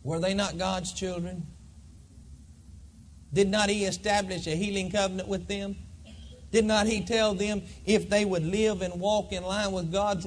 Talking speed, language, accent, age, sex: 170 wpm, English, American, 40-59, male